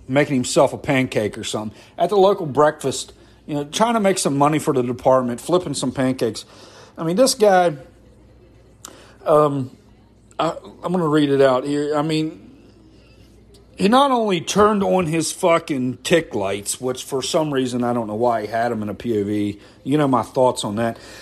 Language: English